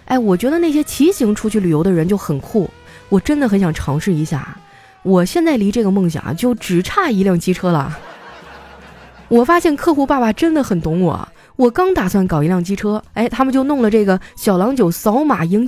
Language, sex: Chinese, female